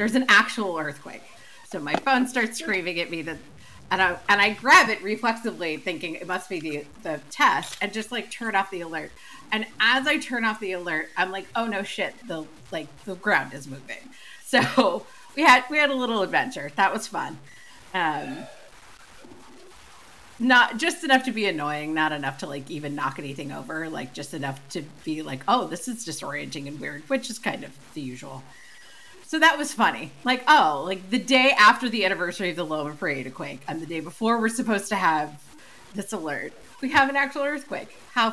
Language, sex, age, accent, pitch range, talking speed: English, female, 40-59, American, 170-255 Hz, 200 wpm